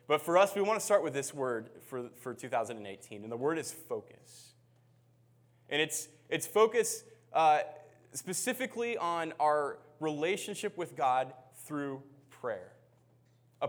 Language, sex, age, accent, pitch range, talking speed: English, male, 20-39, American, 120-155 Hz, 135 wpm